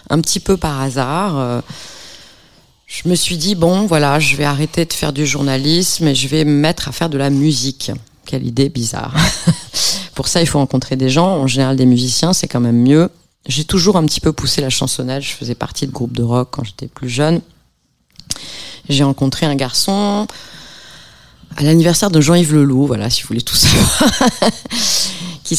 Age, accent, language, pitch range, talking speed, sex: 20-39, French, French, 130-165 Hz, 195 wpm, female